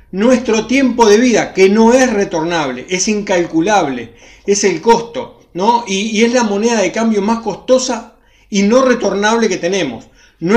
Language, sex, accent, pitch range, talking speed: Spanish, male, Argentinian, 180-230 Hz, 165 wpm